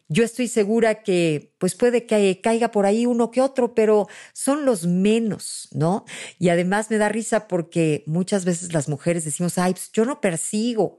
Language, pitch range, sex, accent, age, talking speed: Spanish, 175-220 Hz, female, Mexican, 50-69, 185 wpm